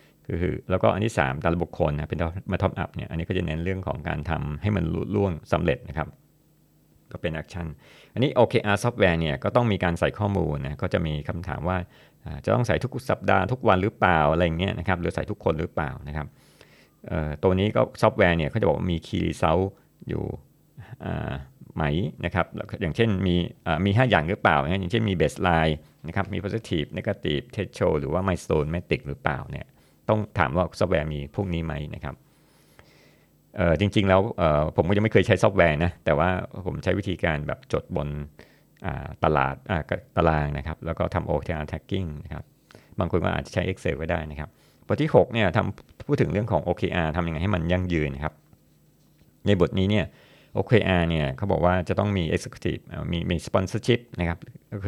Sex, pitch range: male, 80-100 Hz